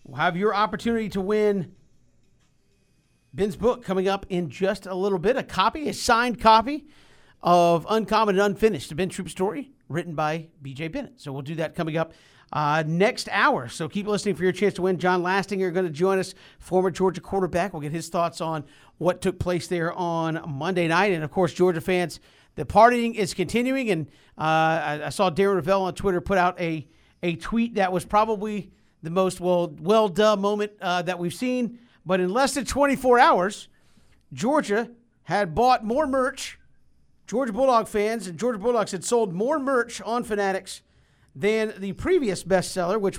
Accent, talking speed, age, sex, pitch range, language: American, 185 wpm, 50-69, male, 175-220 Hz, English